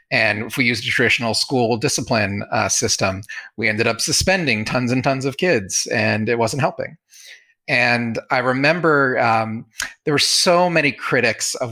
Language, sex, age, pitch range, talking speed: English, male, 30-49, 105-130 Hz, 170 wpm